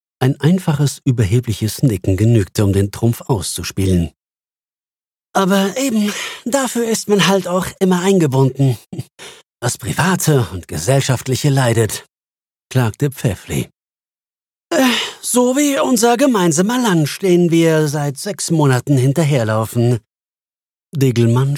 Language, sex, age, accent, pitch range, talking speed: German, male, 50-69, German, 105-165 Hz, 105 wpm